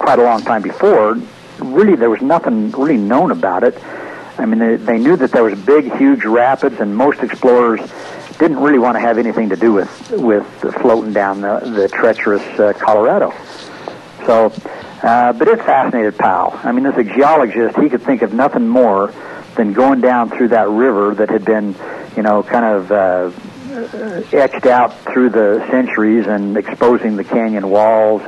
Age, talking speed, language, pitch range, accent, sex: 60-79, 180 wpm, English, 110-130 Hz, American, male